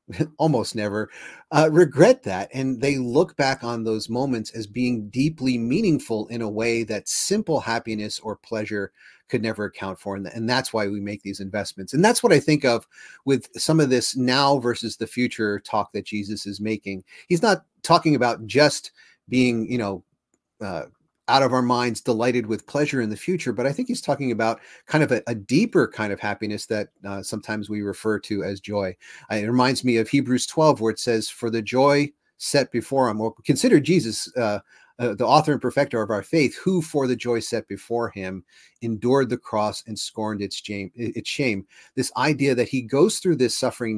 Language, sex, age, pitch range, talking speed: English, male, 30-49, 105-135 Hz, 200 wpm